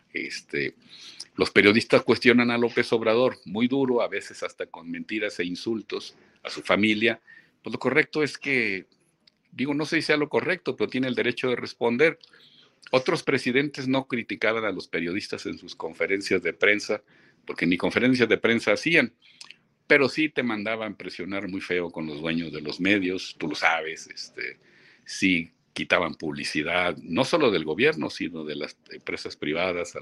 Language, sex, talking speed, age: Spanish, male, 170 wpm, 50-69